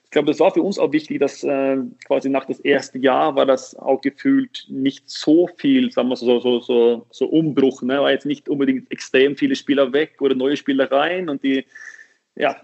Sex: male